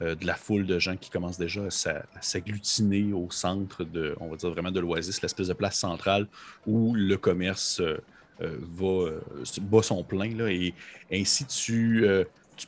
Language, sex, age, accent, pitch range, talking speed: French, male, 30-49, Canadian, 90-100 Hz, 165 wpm